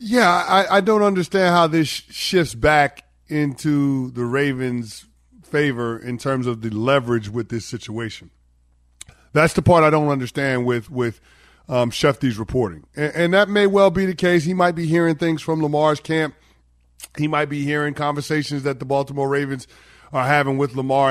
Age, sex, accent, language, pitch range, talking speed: 30-49, male, American, English, 125-155 Hz, 175 wpm